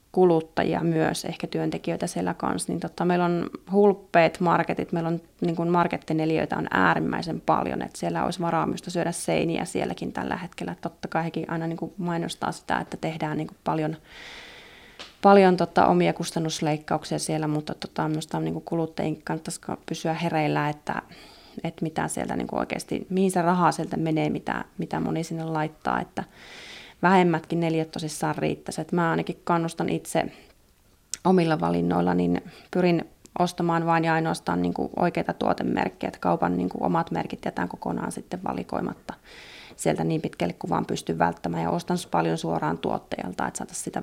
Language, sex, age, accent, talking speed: Finnish, female, 20-39, native, 150 wpm